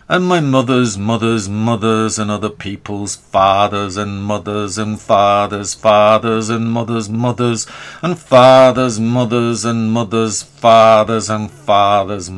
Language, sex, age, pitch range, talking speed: English, male, 50-69, 100-115 Hz, 120 wpm